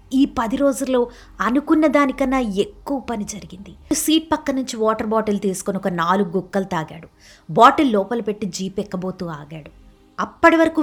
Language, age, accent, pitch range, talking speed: Telugu, 20-39, native, 180-230 Hz, 140 wpm